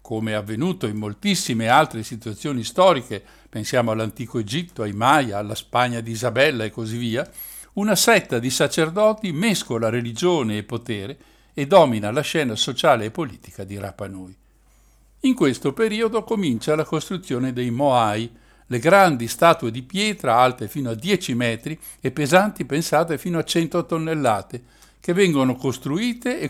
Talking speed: 145 wpm